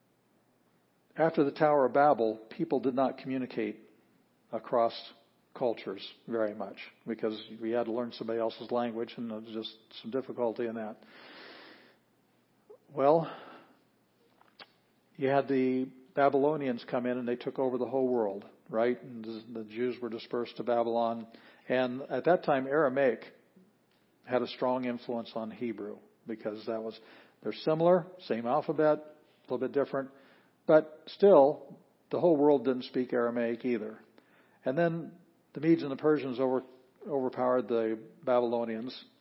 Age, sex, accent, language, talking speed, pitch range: 50-69, male, American, English, 140 wpm, 115-135 Hz